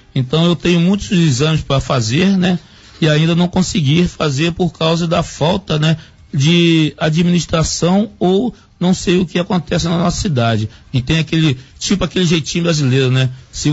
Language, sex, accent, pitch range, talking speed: Portuguese, male, Brazilian, 130-175 Hz, 165 wpm